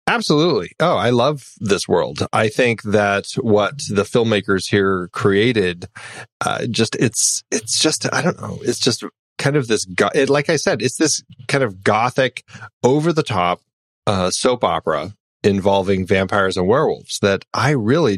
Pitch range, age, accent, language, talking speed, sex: 95-125 Hz, 30-49, American, English, 165 wpm, male